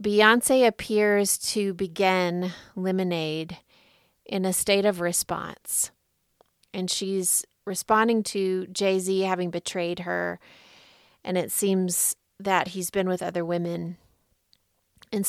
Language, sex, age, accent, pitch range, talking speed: English, female, 30-49, American, 175-200 Hz, 110 wpm